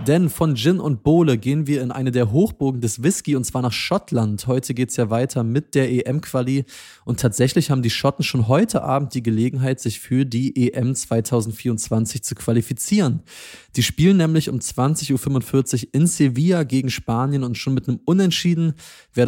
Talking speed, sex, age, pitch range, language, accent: 180 wpm, male, 20-39, 120-140 Hz, German, German